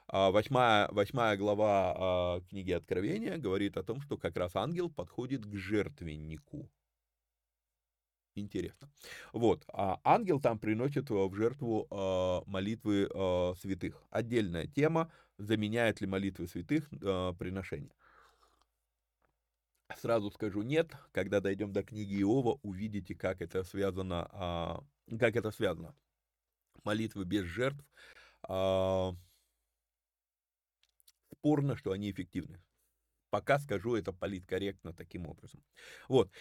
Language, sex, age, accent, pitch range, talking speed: Russian, male, 30-49, native, 90-120 Hz, 105 wpm